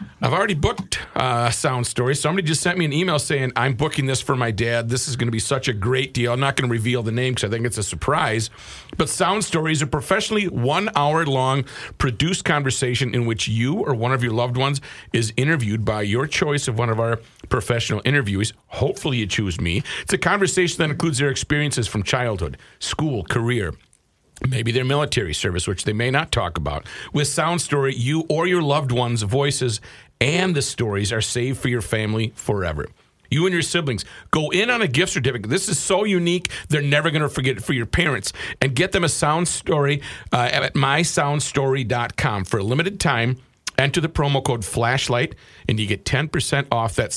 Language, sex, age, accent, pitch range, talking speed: English, male, 50-69, American, 115-150 Hz, 205 wpm